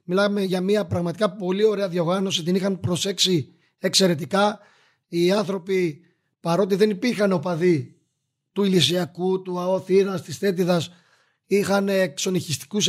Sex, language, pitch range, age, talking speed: male, Greek, 175-205 Hz, 30-49, 115 wpm